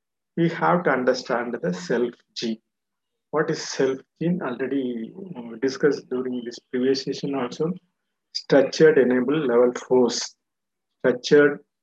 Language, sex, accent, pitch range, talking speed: Tamil, male, native, 130-175 Hz, 115 wpm